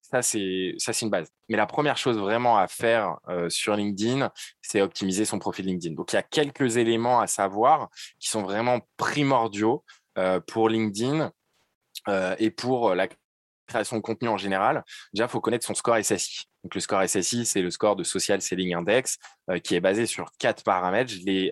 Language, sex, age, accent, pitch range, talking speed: French, male, 20-39, French, 95-120 Hz, 200 wpm